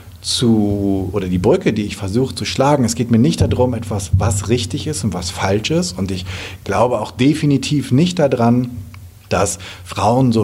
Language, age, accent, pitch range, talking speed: German, 40-59, German, 100-135 Hz, 185 wpm